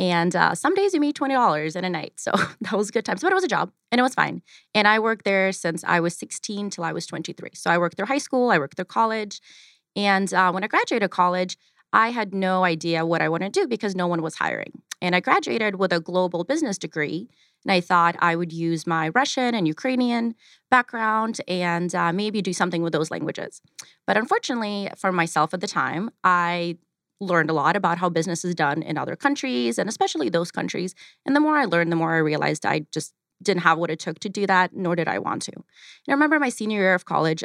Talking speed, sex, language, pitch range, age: 240 wpm, female, English, 165-220 Hz, 30-49